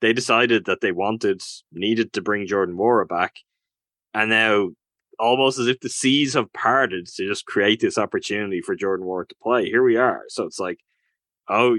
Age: 10-29